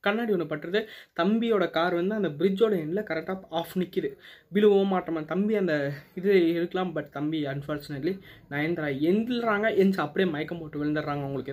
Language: Tamil